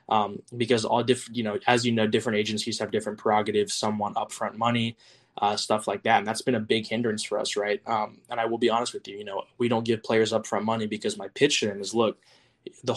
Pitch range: 105-120 Hz